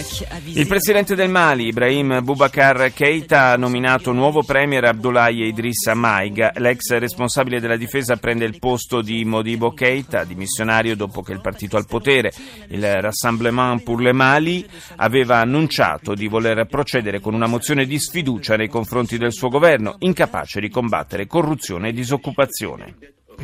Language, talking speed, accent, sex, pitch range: Italian, 145 wpm, native, male, 115-155 Hz